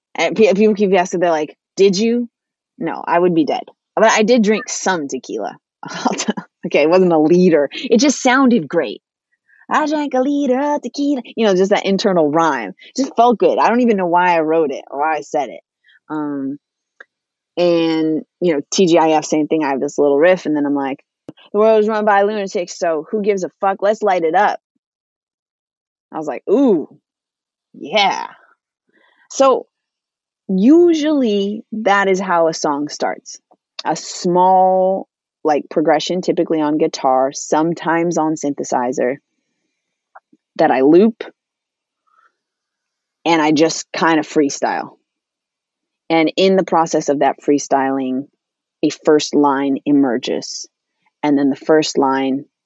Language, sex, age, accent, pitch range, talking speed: English, female, 20-39, American, 150-215 Hz, 155 wpm